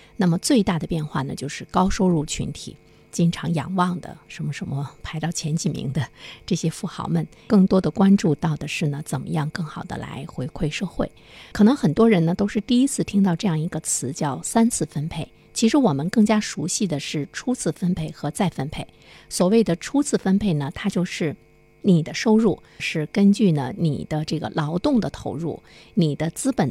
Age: 50-69